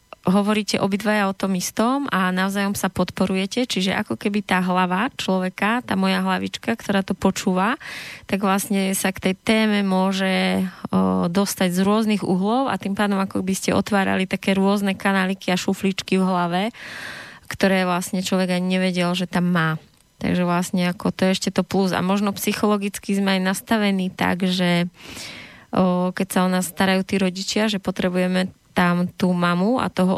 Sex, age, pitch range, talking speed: female, 20-39, 185-205 Hz, 170 wpm